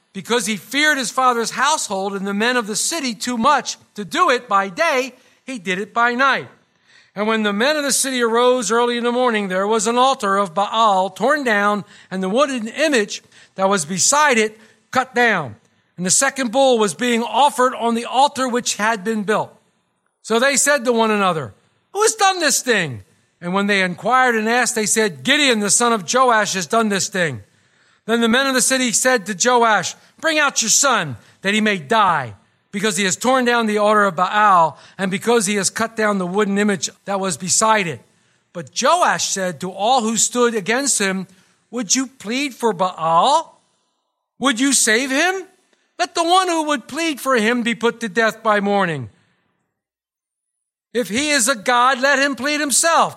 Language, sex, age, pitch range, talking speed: English, male, 50-69, 200-265 Hz, 200 wpm